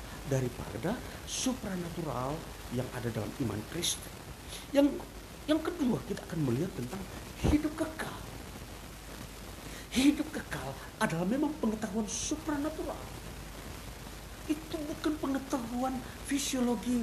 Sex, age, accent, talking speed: male, 50-69, native, 90 wpm